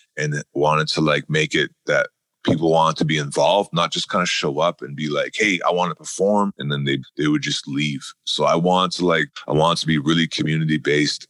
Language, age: English, 30-49